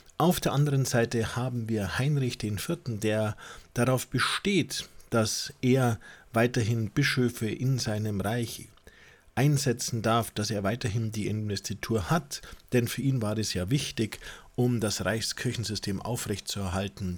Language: German